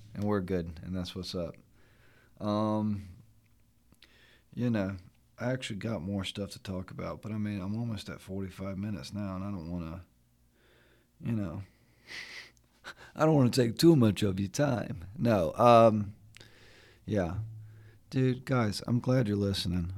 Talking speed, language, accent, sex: 160 wpm, English, American, male